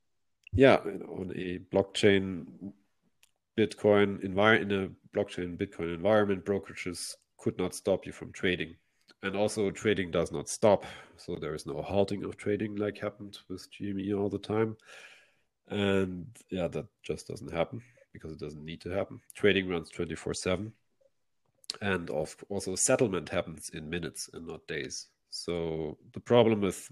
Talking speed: 140 wpm